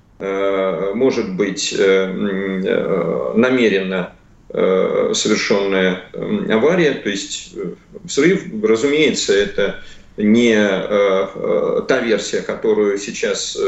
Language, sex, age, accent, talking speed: Russian, male, 40-59, native, 65 wpm